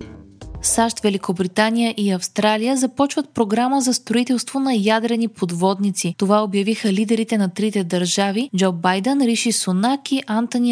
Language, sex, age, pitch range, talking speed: Bulgarian, female, 20-39, 195-250 Hz, 125 wpm